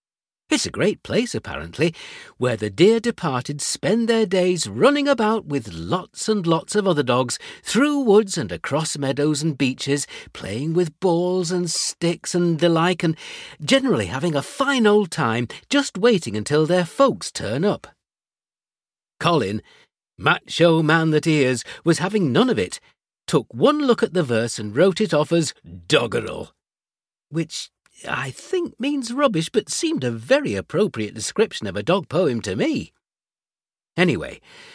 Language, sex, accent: English, male, British